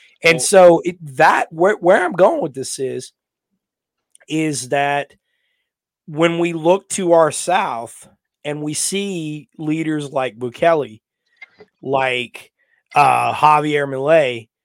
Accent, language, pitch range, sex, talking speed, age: American, English, 140-185 Hz, male, 120 wpm, 30-49